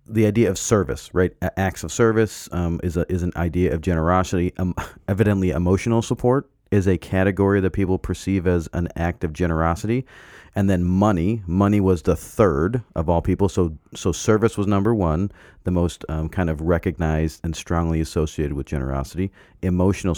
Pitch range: 80-100 Hz